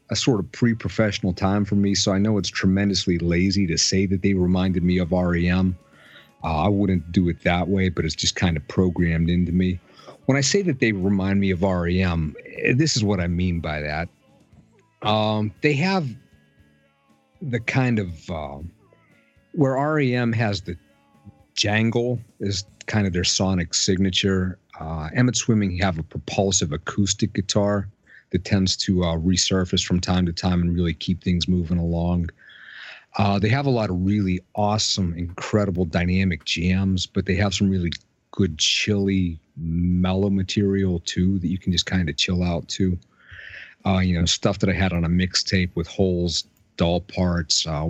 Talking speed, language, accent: 175 wpm, English, American